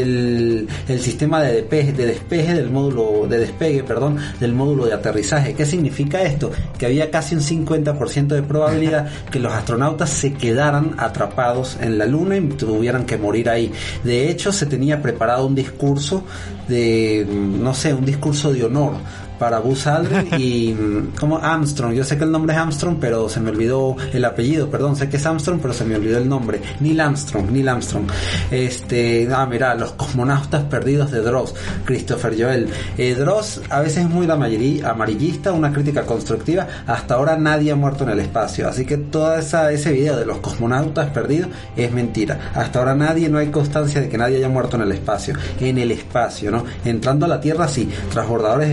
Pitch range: 115-150 Hz